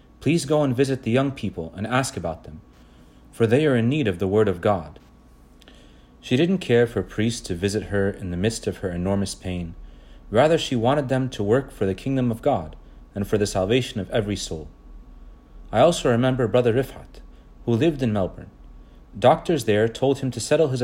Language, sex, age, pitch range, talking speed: English, male, 40-59, 85-125 Hz, 200 wpm